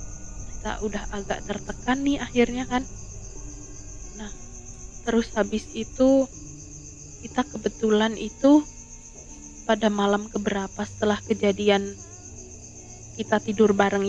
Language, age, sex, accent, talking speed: Indonesian, 20-39, female, native, 95 wpm